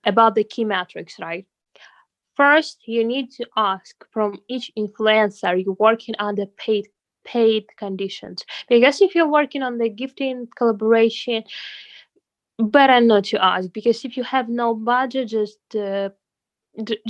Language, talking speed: English, 140 wpm